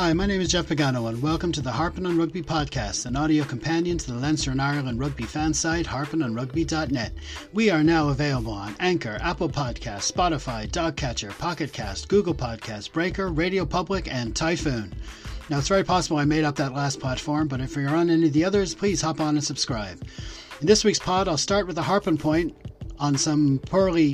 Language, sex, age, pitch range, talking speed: English, male, 40-59, 135-170 Hz, 200 wpm